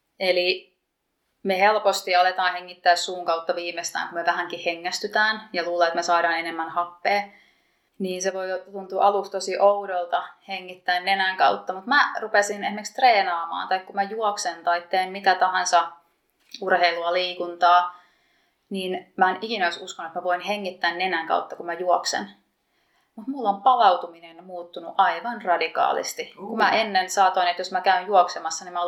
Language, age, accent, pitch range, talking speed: Finnish, 30-49, native, 175-200 Hz, 160 wpm